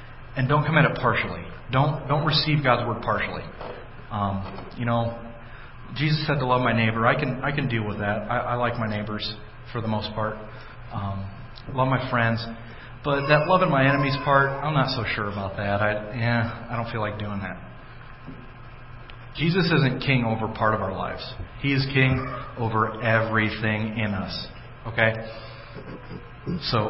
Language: English